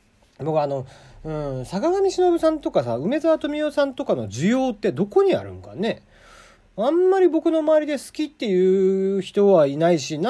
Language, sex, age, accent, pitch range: Japanese, male, 40-59, native, 150-250 Hz